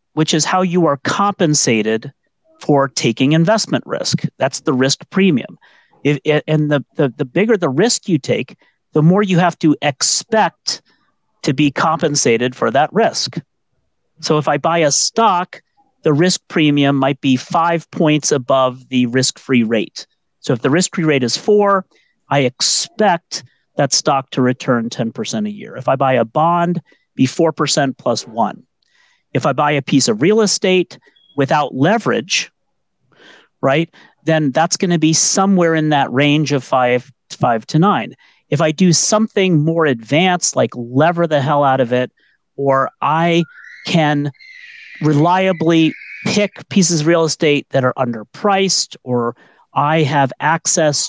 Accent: American